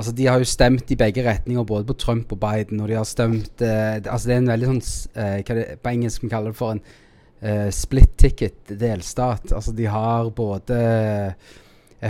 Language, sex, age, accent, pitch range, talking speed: English, male, 20-39, Norwegian, 110-125 Hz, 205 wpm